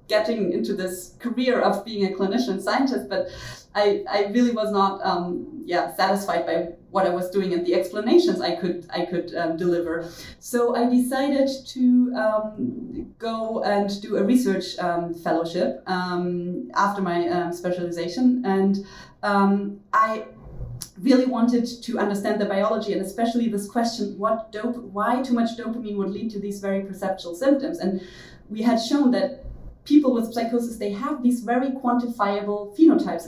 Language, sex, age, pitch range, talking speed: English, female, 30-49, 185-235 Hz, 160 wpm